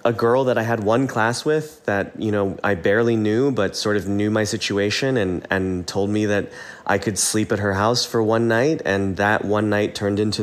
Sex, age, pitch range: male, 20-39, 95-115 Hz